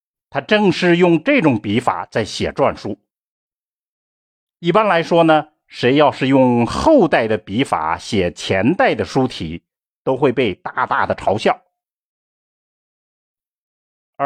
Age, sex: 50-69, male